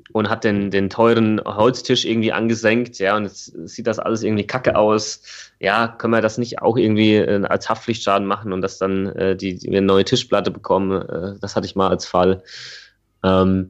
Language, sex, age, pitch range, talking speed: German, male, 30-49, 95-120 Hz, 195 wpm